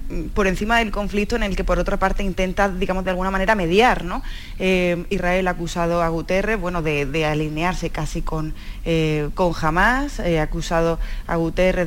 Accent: Spanish